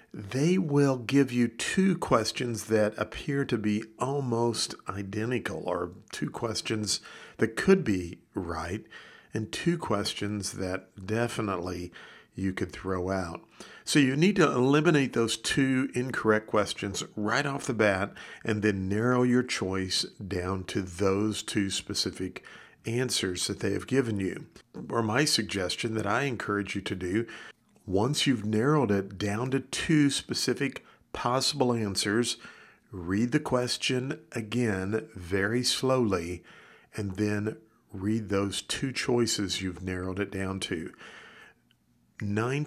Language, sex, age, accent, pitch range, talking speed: English, male, 50-69, American, 100-125 Hz, 130 wpm